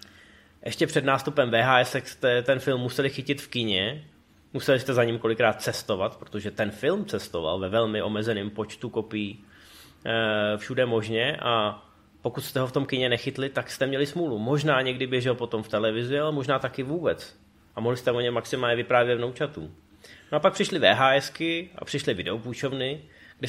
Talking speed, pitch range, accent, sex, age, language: 175 wpm, 115-140 Hz, native, male, 20-39, Czech